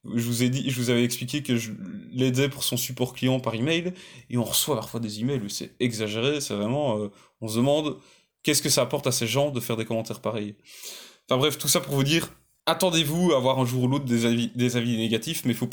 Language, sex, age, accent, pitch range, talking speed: French, male, 20-39, French, 120-145 Hz, 230 wpm